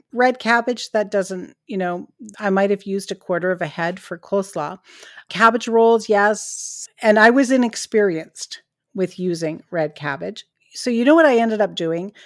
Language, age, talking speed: English, 50-69, 175 wpm